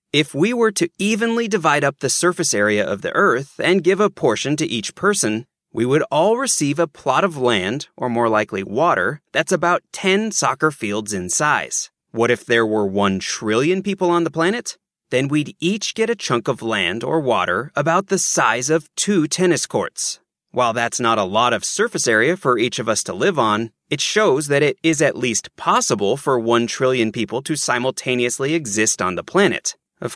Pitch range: 120-180 Hz